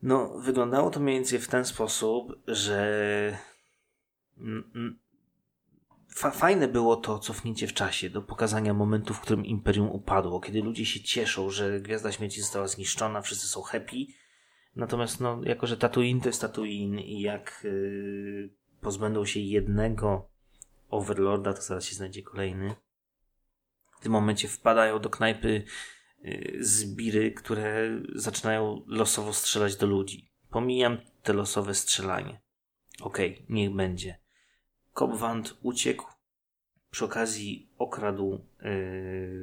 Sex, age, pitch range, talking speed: male, 20-39, 100-115 Hz, 120 wpm